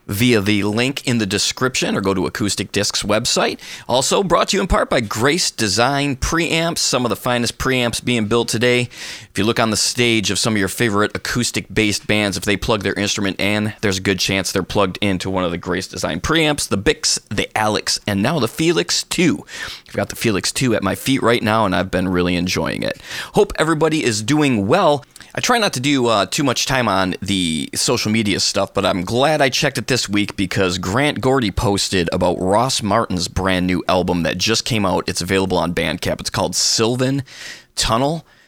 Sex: male